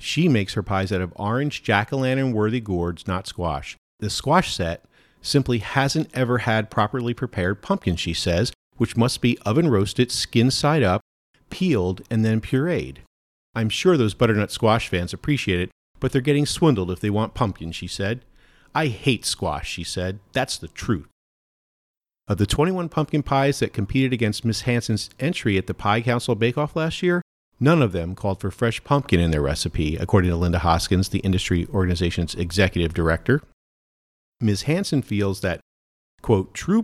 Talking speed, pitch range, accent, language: 170 wpm, 90-130 Hz, American, English